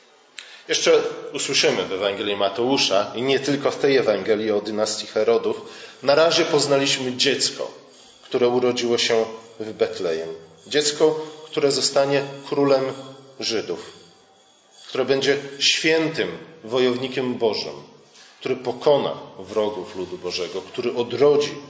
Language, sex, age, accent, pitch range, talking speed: Polish, male, 40-59, native, 115-155 Hz, 110 wpm